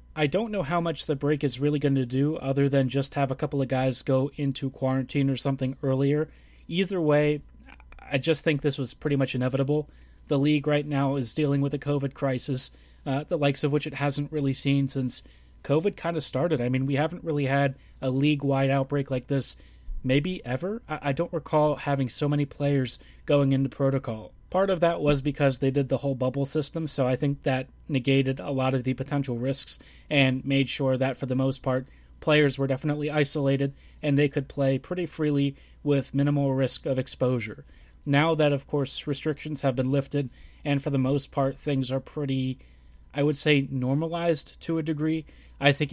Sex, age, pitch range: male, 30-49, 130-150 Hz